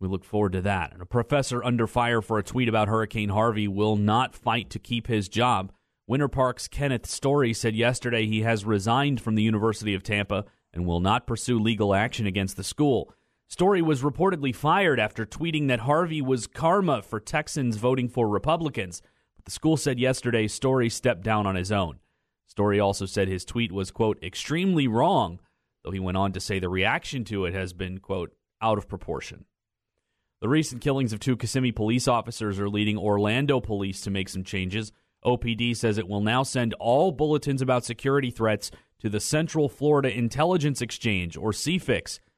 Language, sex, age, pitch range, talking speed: English, male, 30-49, 100-130 Hz, 185 wpm